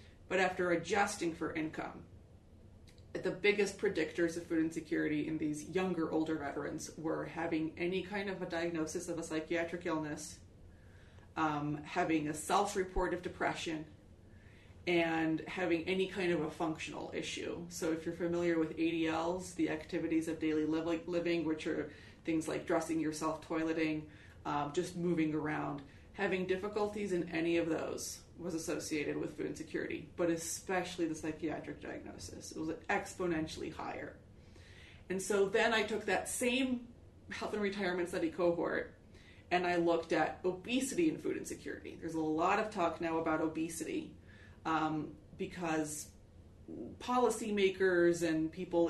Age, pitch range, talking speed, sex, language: 30-49, 155-180 Hz, 145 wpm, female, English